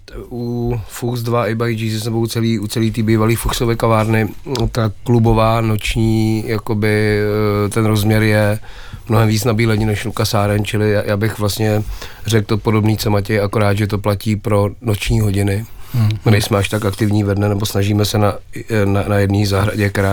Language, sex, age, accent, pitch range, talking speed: Czech, male, 30-49, native, 100-110 Hz, 170 wpm